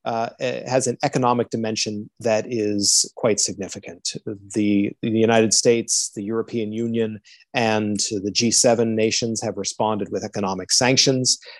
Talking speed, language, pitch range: 135 wpm, English, 110-130 Hz